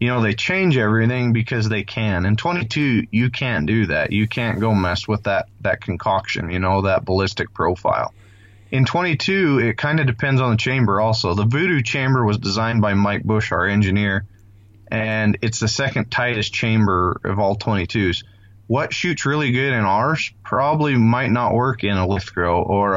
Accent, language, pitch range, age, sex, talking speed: American, English, 100-115 Hz, 30-49, male, 185 wpm